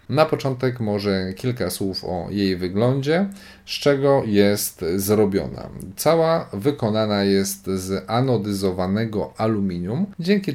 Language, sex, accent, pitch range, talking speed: Polish, male, native, 100-130 Hz, 110 wpm